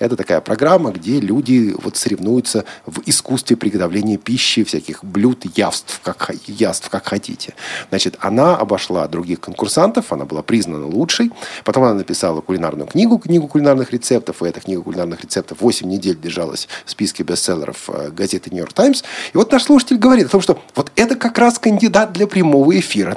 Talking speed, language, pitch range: 170 wpm, Russian, 110-165 Hz